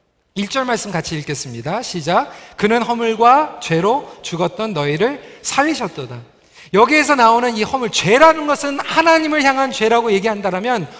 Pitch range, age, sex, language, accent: 185-275 Hz, 40-59, male, Korean, native